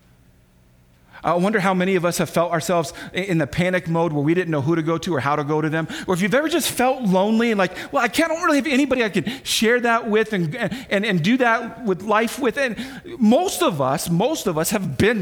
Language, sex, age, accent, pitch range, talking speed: English, male, 40-59, American, 135-210 Hz, 255 wpm